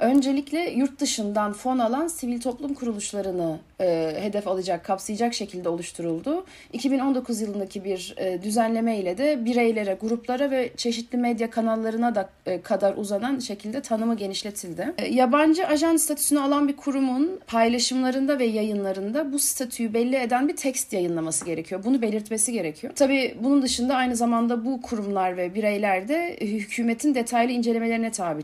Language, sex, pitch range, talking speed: Turkish, female, 195-260 Hz, 145 wpm